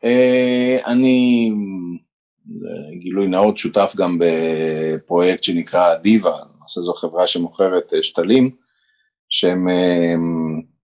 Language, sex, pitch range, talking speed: Hebrew, male, 85-115 Hz, 85 wpm